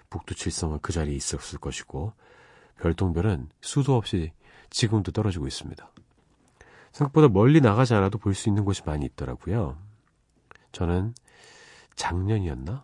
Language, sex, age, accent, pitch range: Korean, male, 40-59, native, 75-115 Hz